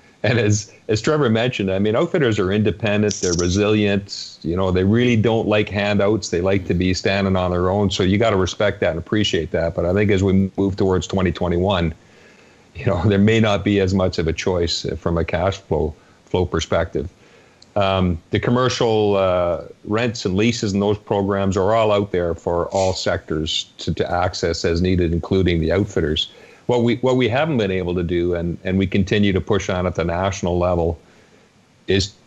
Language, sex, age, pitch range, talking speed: English, male, 50-69, 90-105 Hz, 200 wpm